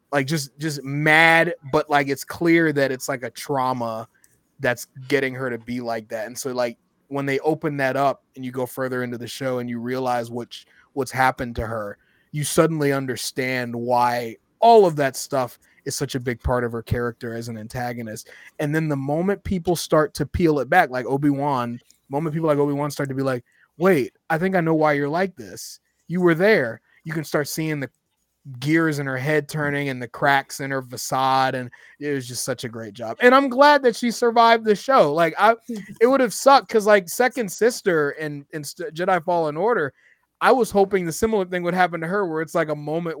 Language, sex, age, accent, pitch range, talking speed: English, male, 20-39, American, 125-165 Hz, 215 wpm